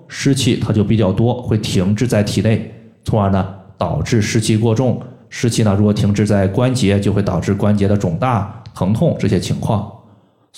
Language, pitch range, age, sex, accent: Chinese, 100-125 Hz, 20-39, male, native